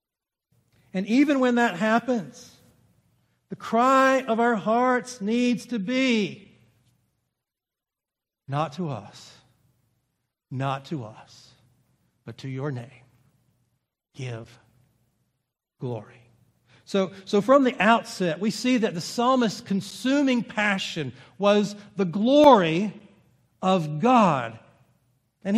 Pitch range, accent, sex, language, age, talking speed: 140-215 Hz, American, male, English, 60-79, 100 wpm